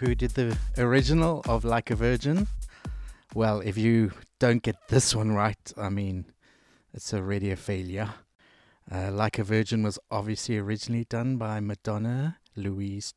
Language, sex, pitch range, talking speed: English, male, 105-130 Hz, 150 wpm